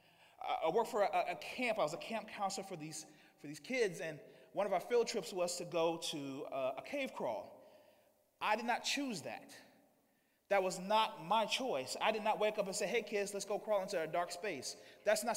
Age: 30-49